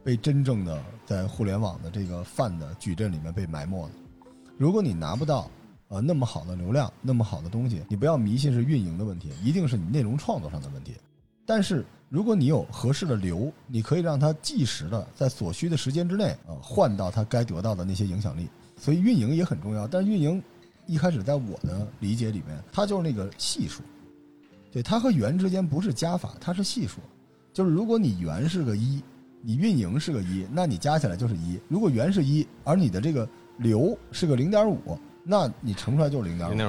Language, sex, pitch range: Chinese, male, 100-155 Hz